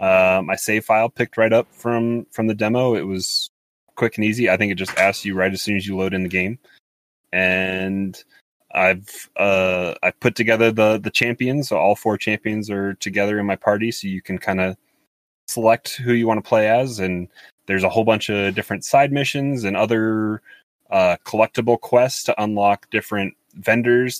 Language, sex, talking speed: English, male, 195 wpm